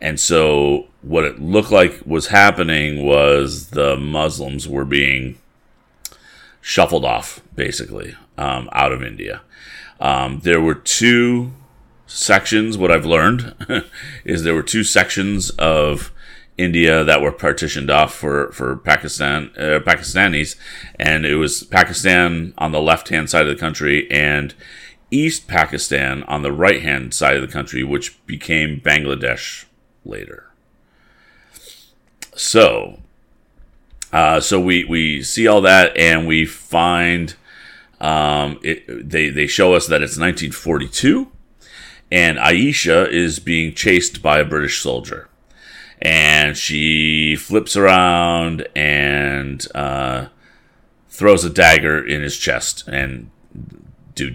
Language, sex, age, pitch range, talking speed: English, male, 40-59, 70-85 Hz, 125 wpm